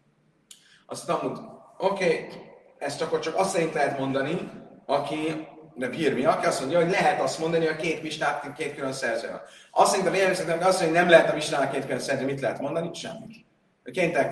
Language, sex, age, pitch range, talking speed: Hungarian, male, 30-49, 155-195 Hz, 190 wpm